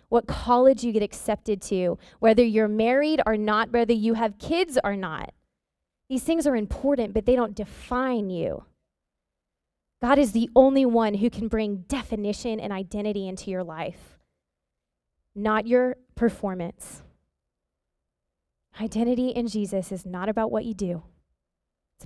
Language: English